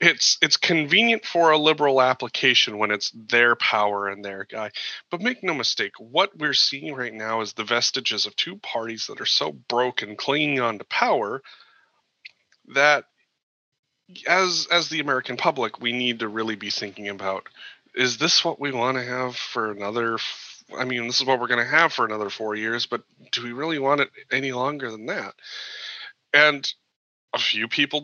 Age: 30-49